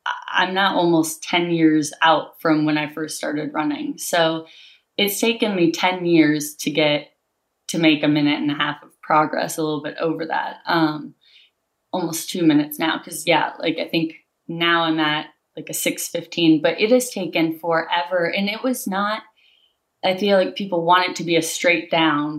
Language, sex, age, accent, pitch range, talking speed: English, female, 20-39, American, 160-190 Hz, 190 wpm